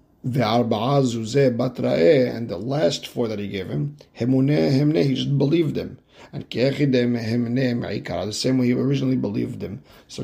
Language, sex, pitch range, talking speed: English, male, 110-130 Hz, 125 wpm